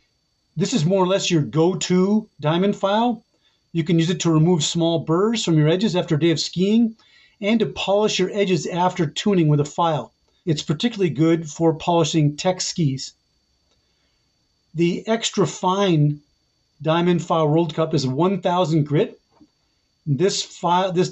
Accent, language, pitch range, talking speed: American, English, 160-190 Hz, 155 wpm